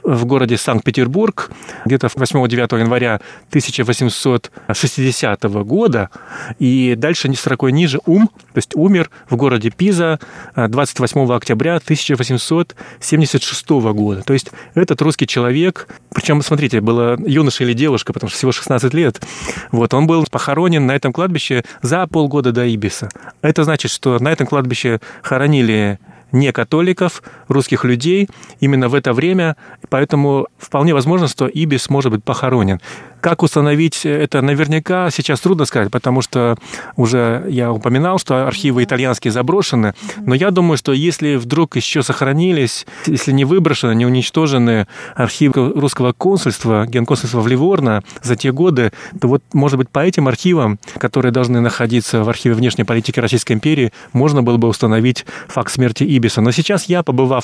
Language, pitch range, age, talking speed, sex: Russian, 120-155 Hz, 30-49, 145 wpm, male